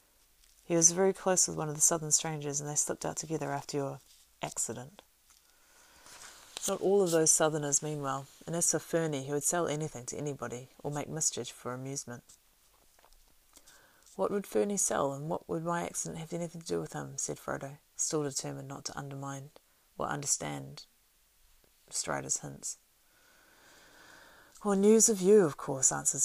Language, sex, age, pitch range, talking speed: English, female, 30-49, 140-170 Hz, 165 wpm